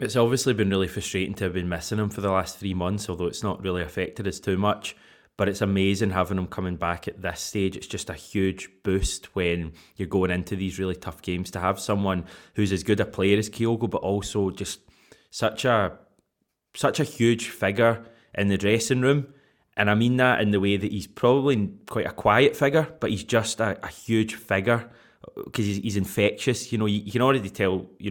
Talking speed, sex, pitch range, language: 215 wpm, male, 95-110 Hz, English